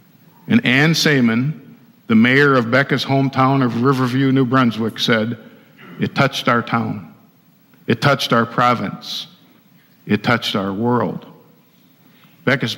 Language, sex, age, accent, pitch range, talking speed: English, male, 50-69, American, 115-135 Hz, 120 wpm